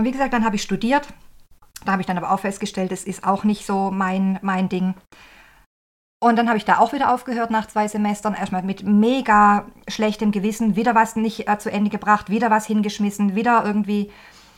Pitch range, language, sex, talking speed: 195-230 Hz, German, female, 205 wpm